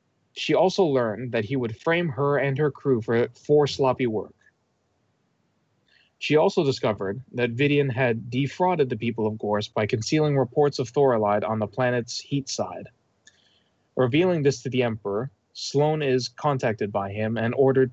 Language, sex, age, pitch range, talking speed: English, male, 20-39, 115-145 Hz, 160 wpm